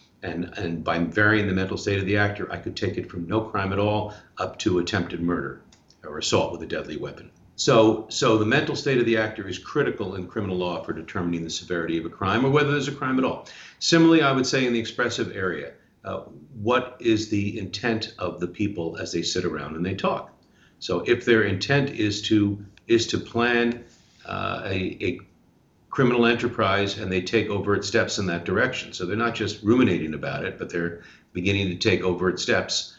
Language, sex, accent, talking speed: English, male, American, 210 wpm